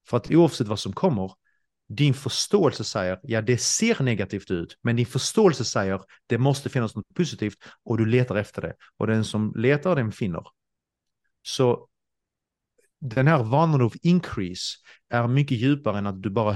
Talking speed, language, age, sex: 175 wpm, Swedish, 30-49, male